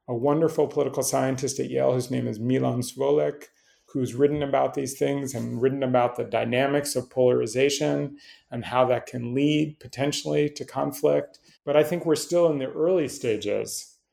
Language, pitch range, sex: English, 120-140 Hz, male